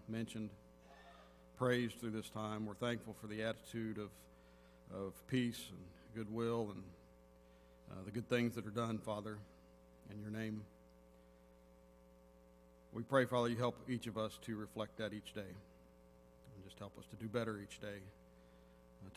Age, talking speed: 50-69, 155 wpm